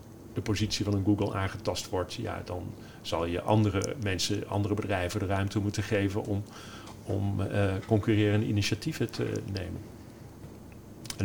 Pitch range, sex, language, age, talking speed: 100-120 Hz, male, Dutch, 40-59, 145 wpm